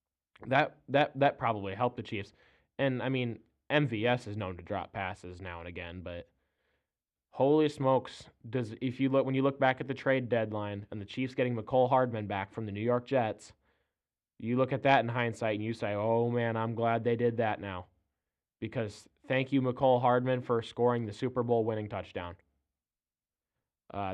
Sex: male